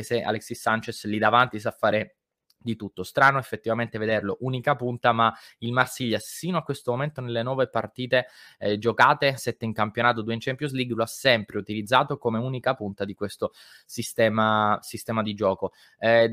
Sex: male